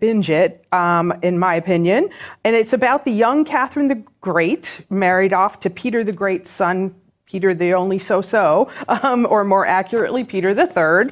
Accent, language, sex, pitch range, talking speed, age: American, English, female, 185-235 Hz, 180 wpm, 40-59